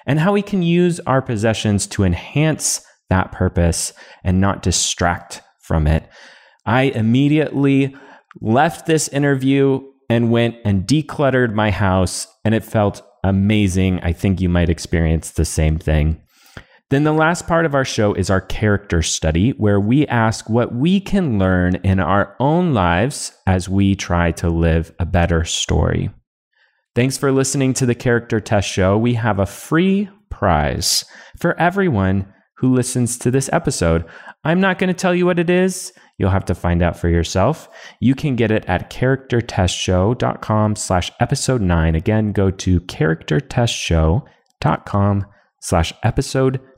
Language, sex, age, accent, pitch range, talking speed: English, male, 30-49, American, 95-135 Hz, 150 wpm